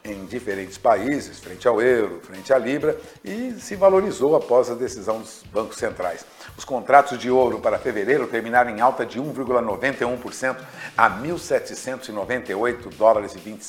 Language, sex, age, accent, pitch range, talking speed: Portuguese, male, 60-79, Brazilian, 110-155 Hz, 145 wpm